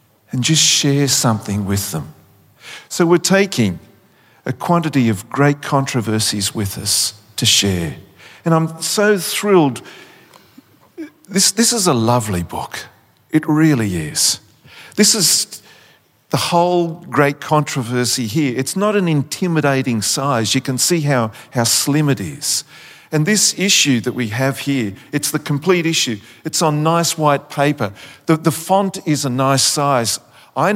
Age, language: 50-69, English